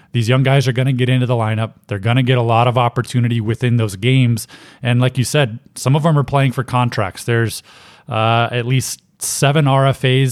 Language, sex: English, male